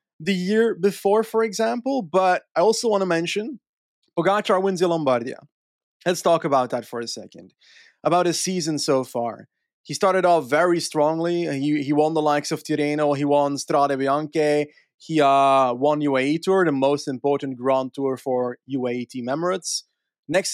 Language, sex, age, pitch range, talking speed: English, male, 20-39, 135-175 Hz, 165 wpm